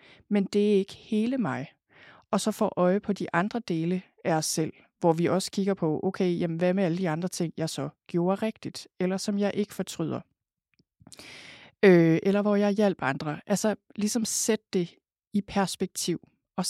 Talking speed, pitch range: 185 wpm, 170-205 Hz